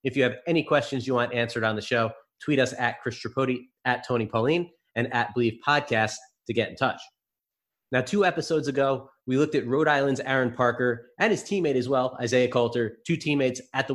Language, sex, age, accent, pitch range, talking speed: English, male, 30-49, American, 120-145 Hz, 210 wpm